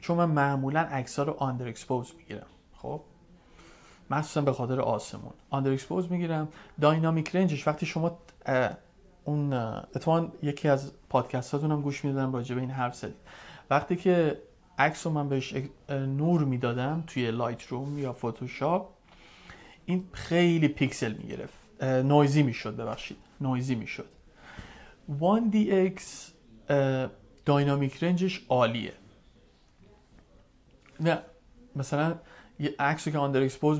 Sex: male